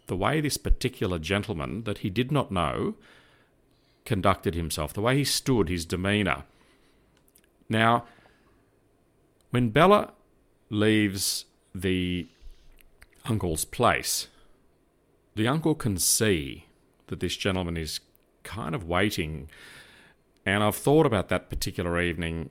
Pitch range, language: 90-110 Hz, English